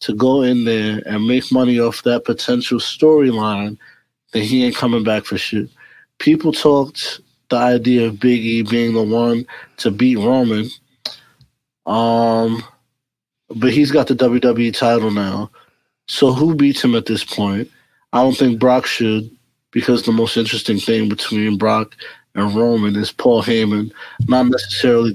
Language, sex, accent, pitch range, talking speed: English, male, American, 110-125 Hz, 155 wpm